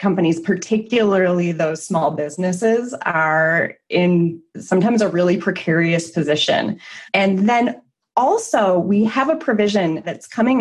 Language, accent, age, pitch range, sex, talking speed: English, American, 20-39, 165-215 Hz, female, 120 wpm